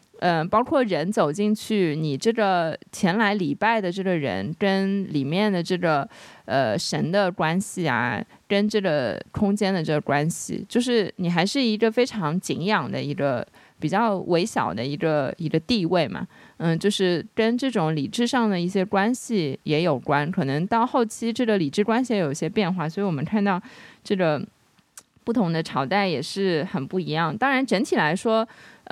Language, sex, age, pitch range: Chinese, female, 20-39, 170-220 Hz